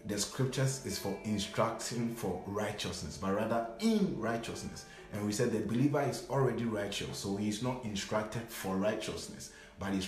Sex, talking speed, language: male, 160 wpm, English